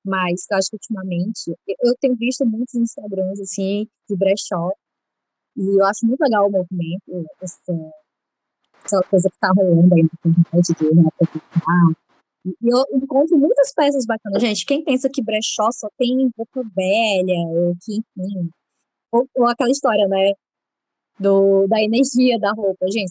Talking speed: 155 wpm